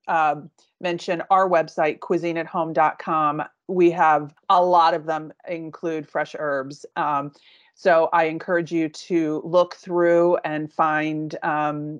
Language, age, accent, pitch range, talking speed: English, 30-49, American, 155-180 Hz, 125 wpm